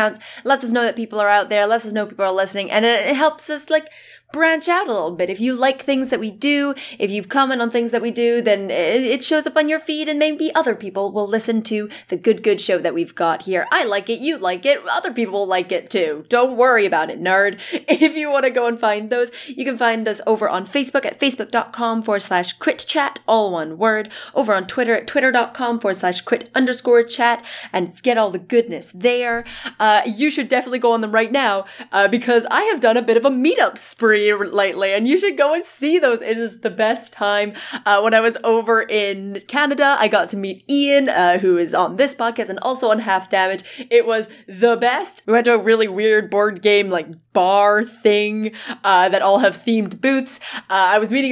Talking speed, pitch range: 230 wpm, 205-255 Hz